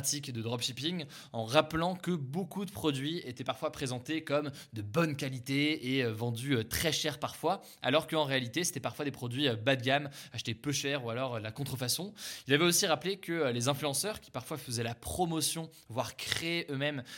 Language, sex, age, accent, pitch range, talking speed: French, male, 20-39, French, 130-160 Hz, 180 wpm